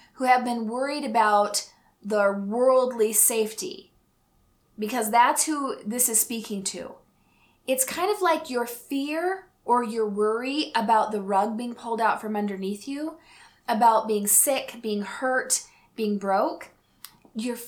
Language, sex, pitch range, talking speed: English, female, 210-265 Hz, 140 wpm